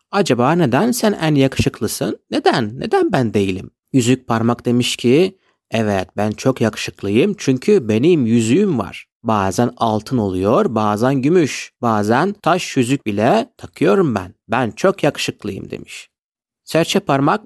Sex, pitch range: male, 110-150 Hz